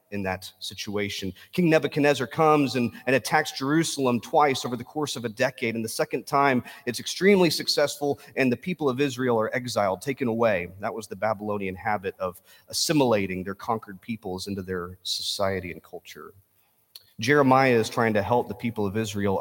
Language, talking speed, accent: English, 175 wpm, American